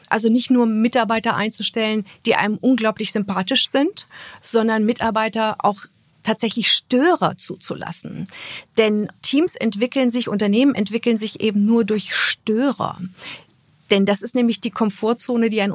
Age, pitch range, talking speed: 50-69, 190-235 Hz, 135 wpm